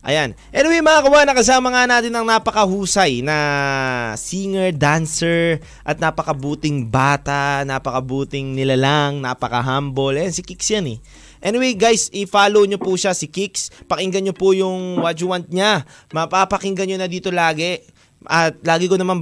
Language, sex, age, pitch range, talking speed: Filipino, male, 20-39, 155-240 Hz, 150 wpm